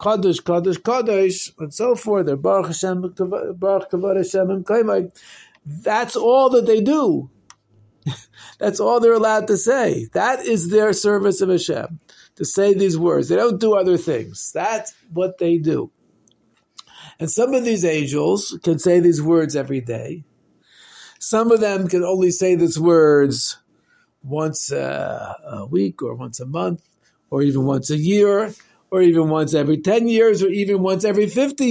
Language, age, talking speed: English, 50-69, 155 wpm